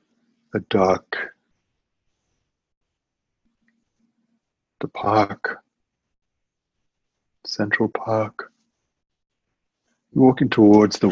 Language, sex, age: English, male, 60-79